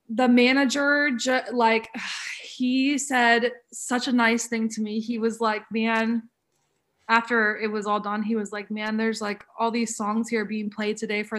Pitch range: 210-250 Hz